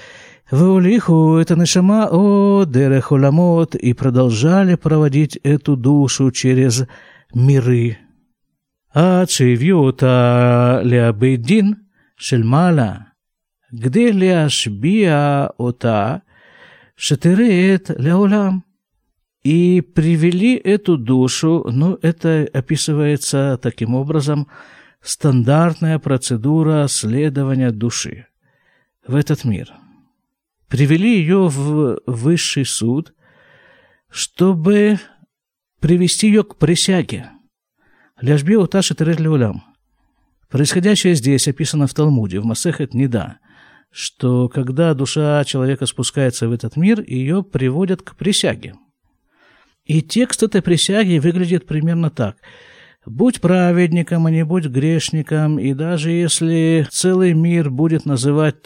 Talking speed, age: 75 wpm, 50-69